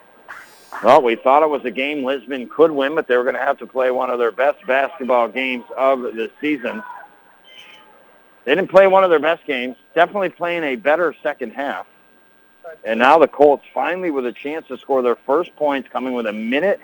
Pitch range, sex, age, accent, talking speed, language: 125-160 Hz, male, 50-69, American, 205 wpm, English